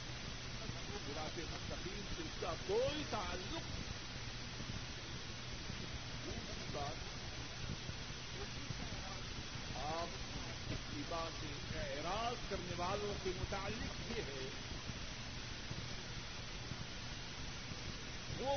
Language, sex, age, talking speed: Urdu, male, 50-69, 50 wpm